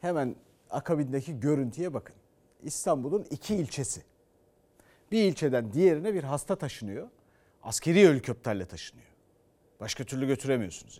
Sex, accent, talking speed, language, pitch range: male, native, 105 wpm, Turkish, 125-205 Hz